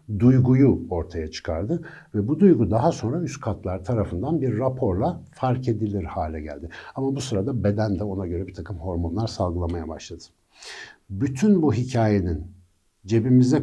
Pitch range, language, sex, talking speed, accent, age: 90-125 Hz, Turkish, male, 145 wpm, native, 60-79